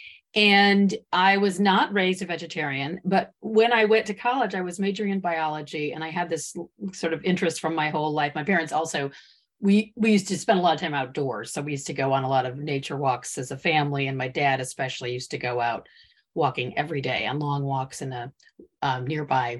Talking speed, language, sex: 225 wpm, English, female